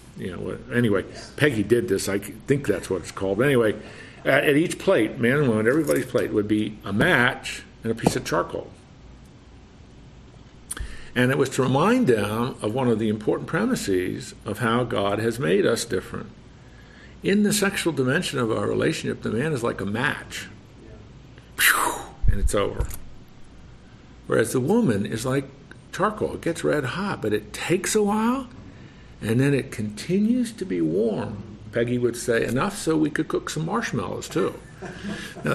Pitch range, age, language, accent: 105-160 Hz, 50-69, English, American